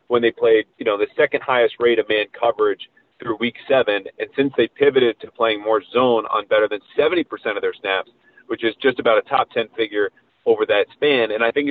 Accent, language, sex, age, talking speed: American, English, male, 40-59, 225 wpm